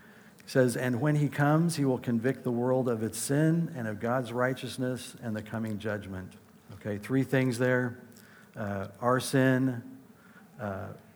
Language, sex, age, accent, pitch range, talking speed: English, male, 60-79, American, 110-130 Hz, 160 wpm